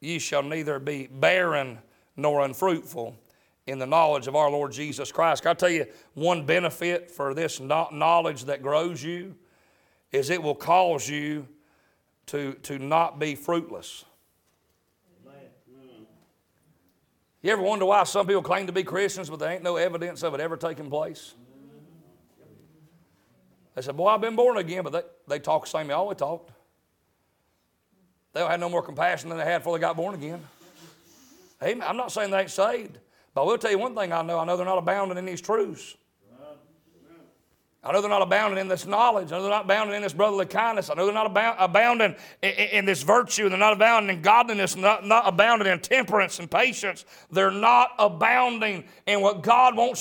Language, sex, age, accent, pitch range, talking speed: English, male, 40-59, American, 165-220 Hz, 190 wpm